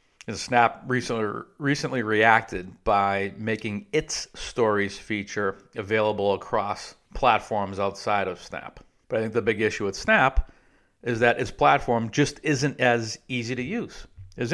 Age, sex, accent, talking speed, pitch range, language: 50-69, male, American, 145 wpm, 100-125 Hz, English